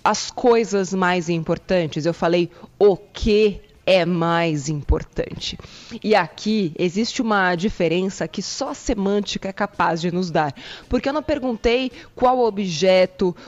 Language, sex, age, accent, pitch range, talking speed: Portuguese, female, 20-39, Brazilian, 185-245 Hz, 140 wpm